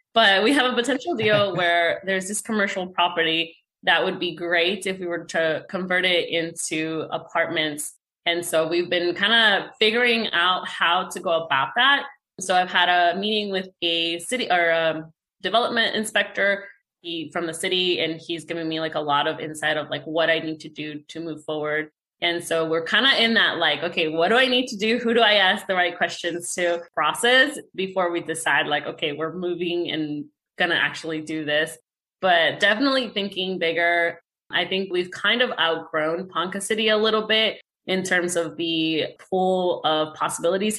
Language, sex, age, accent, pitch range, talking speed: English, female, 20-39, American, 160-205 Hz, 190 wpm